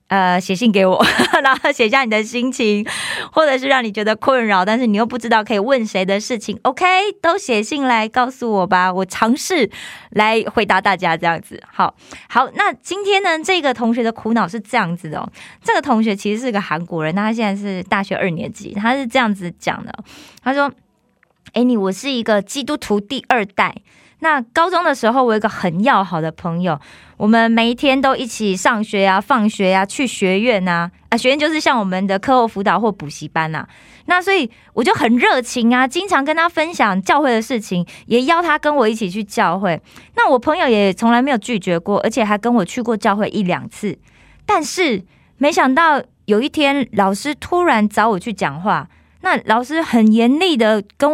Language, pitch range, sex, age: Korean, 200-265 Hz, female, 20-39